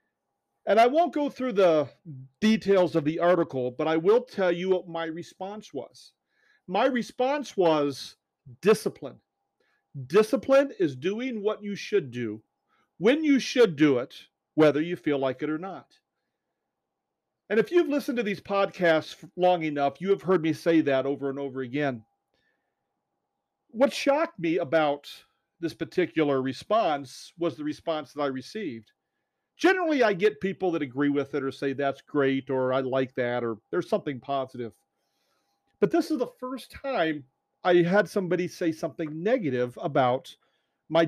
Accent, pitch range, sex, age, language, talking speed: American, 145-210 Hz, male, 40-59, English, 160 wpm